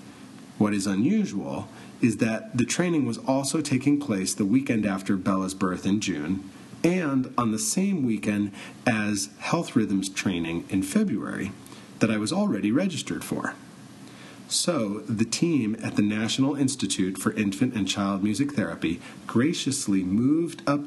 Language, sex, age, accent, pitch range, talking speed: English, male, 40-59, American, 100-130 Hz, 145 wpm